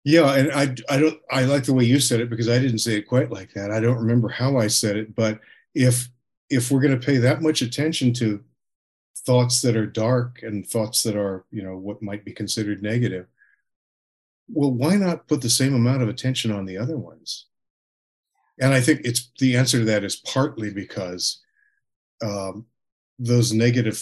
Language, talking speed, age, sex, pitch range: English, 200 wpm, 50-69, male, 110-135 Hz